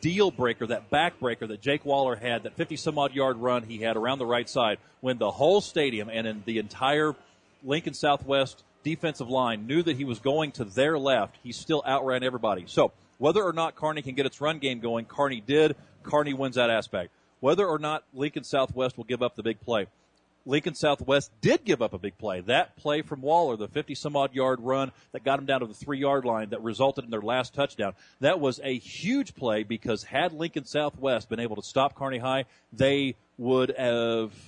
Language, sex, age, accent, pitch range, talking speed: English, male, 40-59, American, 115-145 Hz, 210 wpm